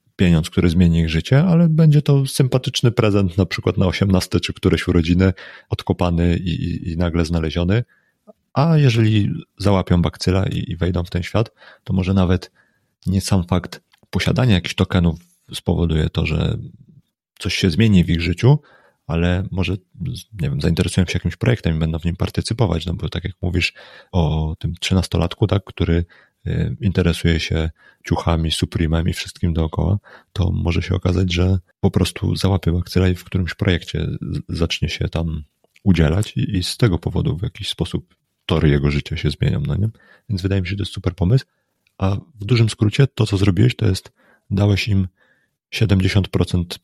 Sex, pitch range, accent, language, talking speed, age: male, 85-110 Hz, native, Polish, 170 wpm, 30-49